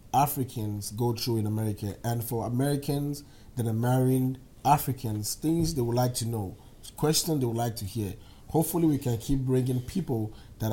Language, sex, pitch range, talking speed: English, male, 110-135 Hz, 175 wpm